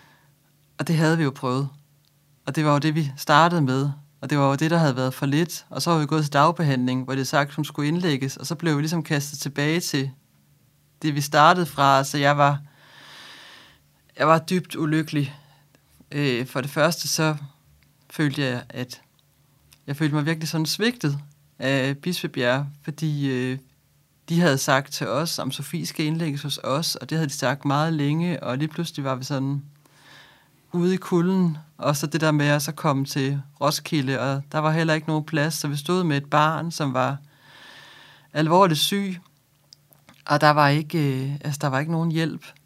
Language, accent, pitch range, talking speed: Danish, native, 140-160 Hz, 195 wpm